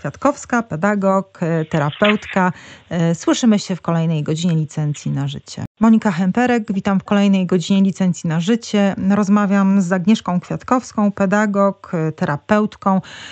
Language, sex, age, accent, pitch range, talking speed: Polish, female, 30-49, native, 190-210 Hz, 115 wpm